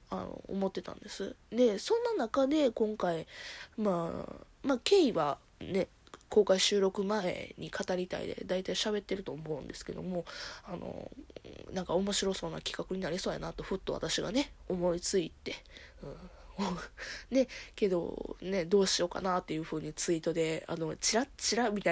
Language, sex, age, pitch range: Japanese, female, 20-39, 185-255 Hz